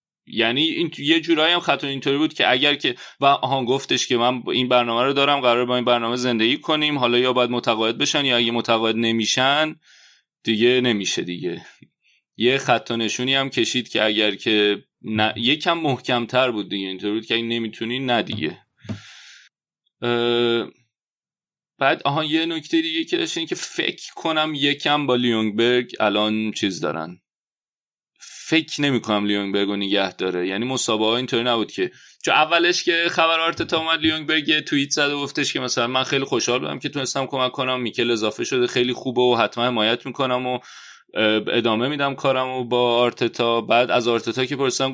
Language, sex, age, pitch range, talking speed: Persian, male, 30-49, 115-140 Hz, 160 wpm